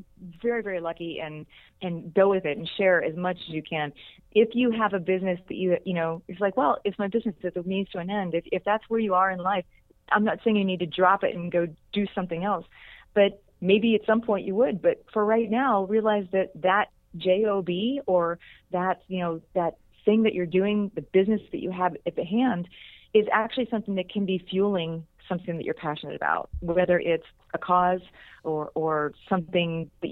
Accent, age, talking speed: American, 30-49, 215 wpm